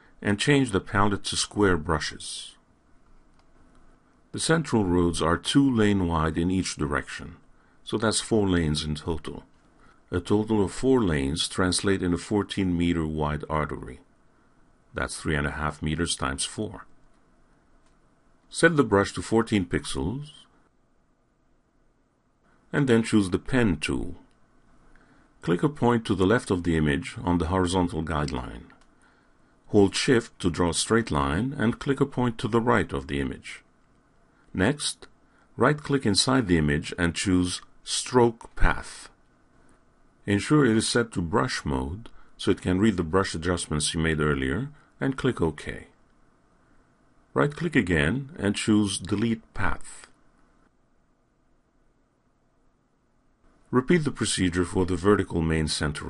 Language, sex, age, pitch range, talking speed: English, male, 50-69, 80-115 Hz, 135 wpm